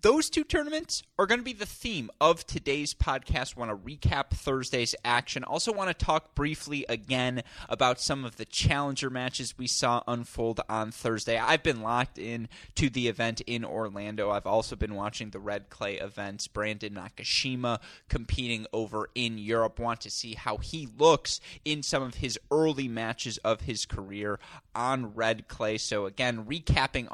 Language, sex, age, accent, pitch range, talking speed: English, male, 20-39, American, 105-135 Hz, 170 wpm